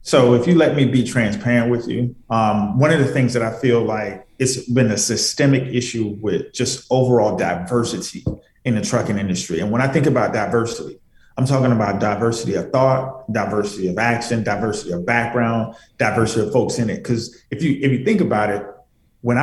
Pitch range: 115-135 Hz